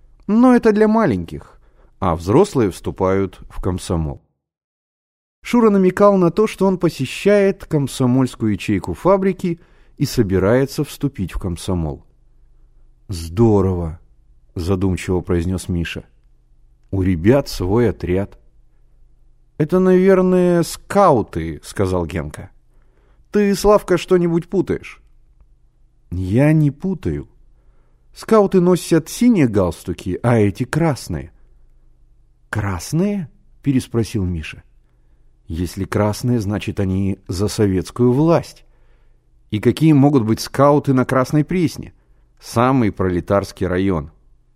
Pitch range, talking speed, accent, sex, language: 90-150 Hz, 95 wpm, native, male, Russian